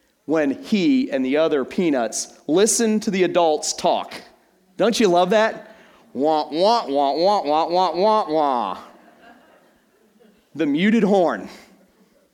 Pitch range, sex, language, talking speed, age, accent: 155-220 Hz, male, English, 125 wpm, 40-59, American